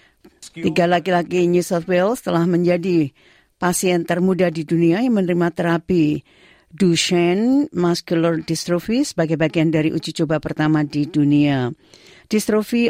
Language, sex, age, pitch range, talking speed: Indonesian, female, 50-69, 160-195 Hz, 125 wpm